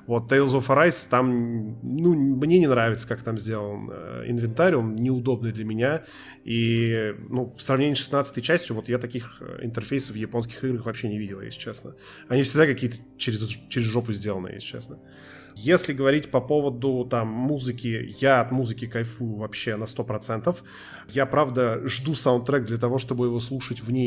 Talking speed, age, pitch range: 170 wpm, 20-39, 120-145 Hz